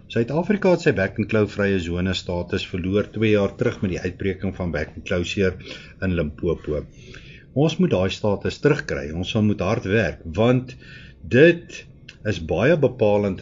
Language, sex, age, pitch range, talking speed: Swedish, male, 50-69, 95-125 Hz, 145 wpm